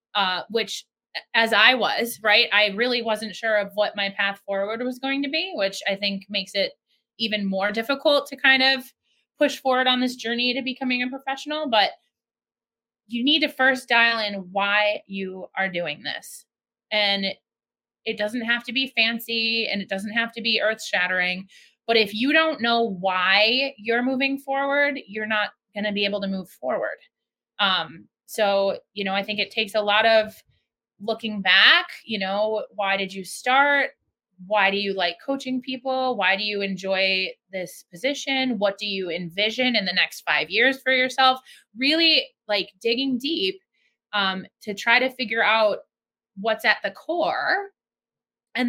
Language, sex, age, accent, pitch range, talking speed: English, female, 20-39, American, 205-260 Hz, 175 wpm